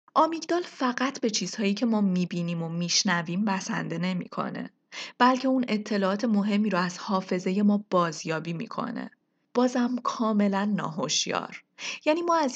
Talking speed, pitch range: 135 wpm, 185-260 Hz